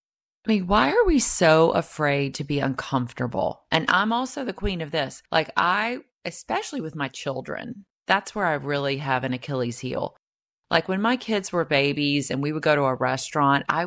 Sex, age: female, 30-49